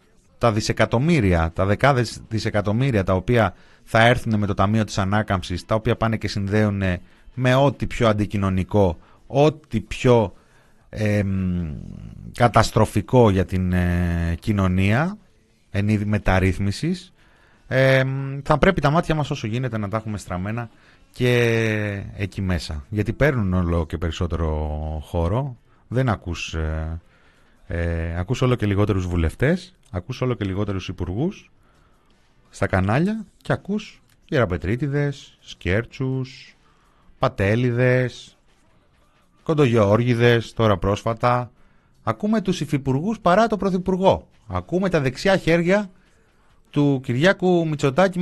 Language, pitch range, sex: Greek, 95-150 Hz, male